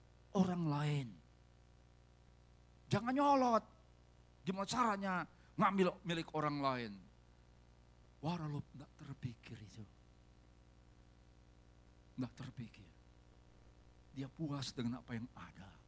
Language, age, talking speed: Indonesian, 50-69, 85 wpm